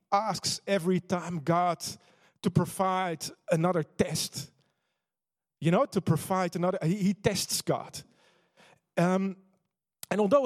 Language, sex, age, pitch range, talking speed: English, male, 40-59, 150-190 Hz, 115 wpm